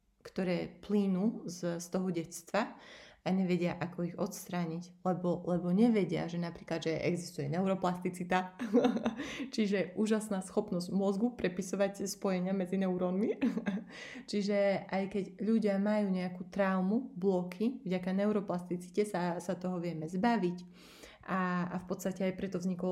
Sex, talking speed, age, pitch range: female, 130 wpm, 30-49, 180-205 Hz